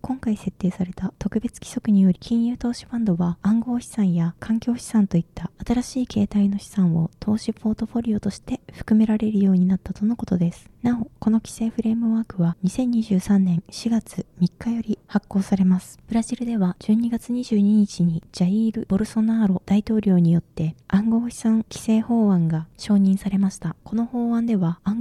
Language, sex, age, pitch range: Japanese, female, 20-39, 185-230 Hz